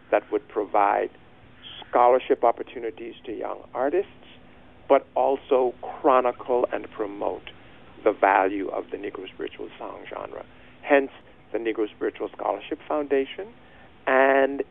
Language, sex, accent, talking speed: English, male, American, 115 wpm